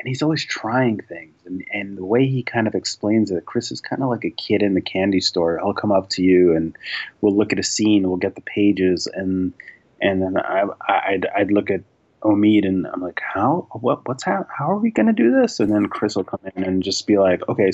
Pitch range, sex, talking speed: 95-115 Hz, male, 255 wpm